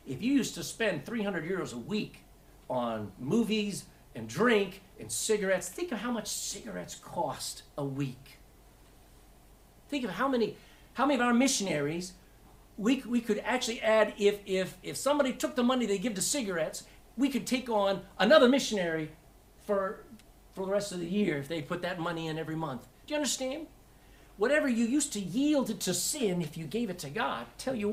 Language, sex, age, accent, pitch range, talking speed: English, male, 50-69, American, 150-230 Hz, 185 wpm